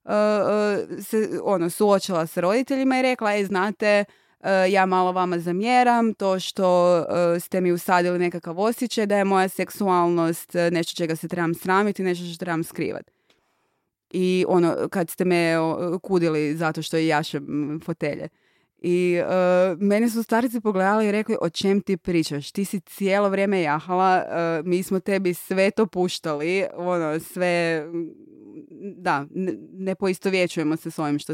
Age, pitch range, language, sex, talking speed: 20-39, 170-210 Hz, Croatian, female, 155 wpm